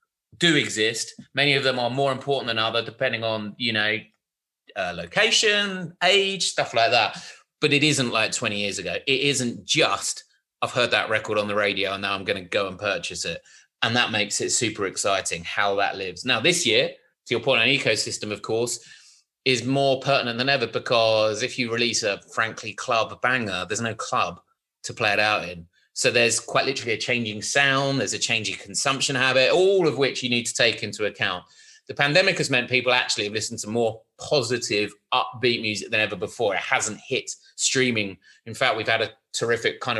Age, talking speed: 30-49, 200 wpm